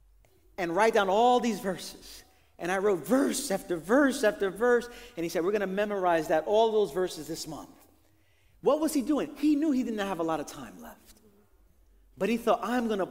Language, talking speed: English, 215 wpm